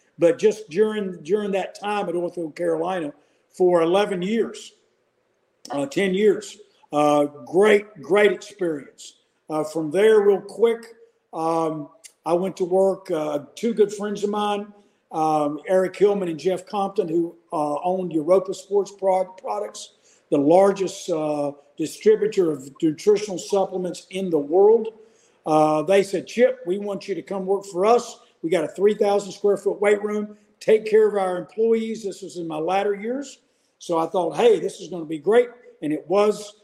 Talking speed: 165 wpm